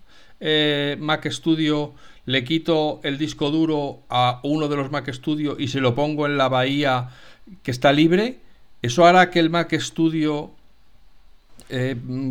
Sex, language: male, Spanish